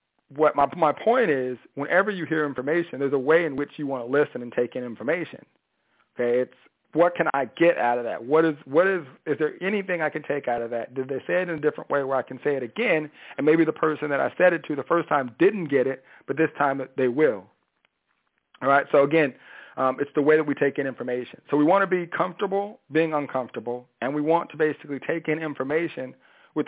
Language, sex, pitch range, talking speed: English, male, 130-160 Hz, 245 wpm